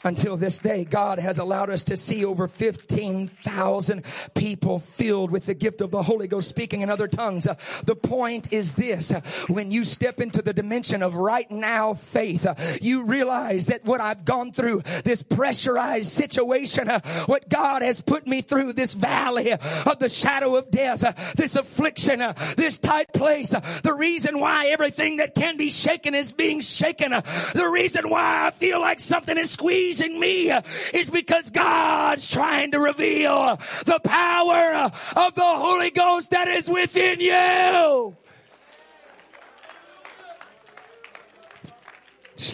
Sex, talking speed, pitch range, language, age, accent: male, 150 wpm, 195-305 Hz, English, 40-59, American